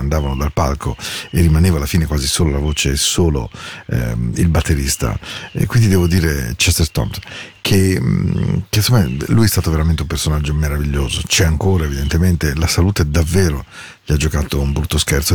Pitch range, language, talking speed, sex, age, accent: 75-90 Hz, Spanish, 170 wpm, male, 40-59, Italian